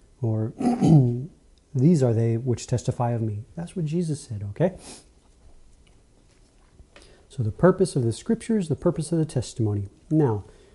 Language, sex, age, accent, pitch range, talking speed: English, male, 40-59, American, 95-145 Hz, 140 wpm